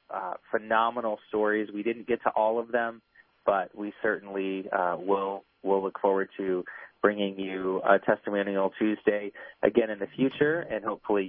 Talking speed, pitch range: 160 wpm, 100-130 Hz